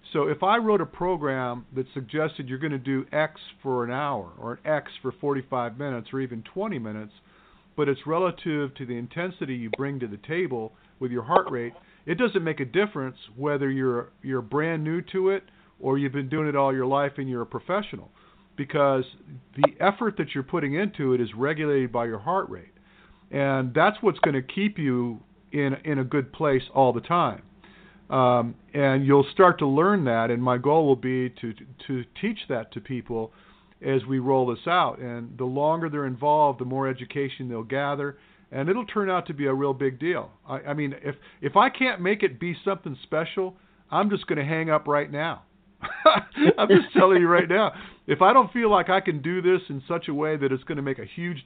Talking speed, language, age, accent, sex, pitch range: 215 wpm, English, 50-69, American, male, 130-175 Hz